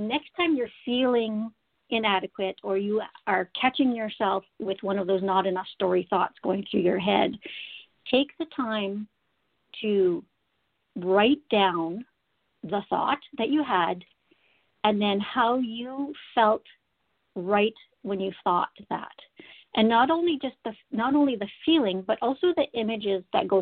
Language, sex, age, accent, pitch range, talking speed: English, female, 50-69, American, 195-255 Hz, 145 wpm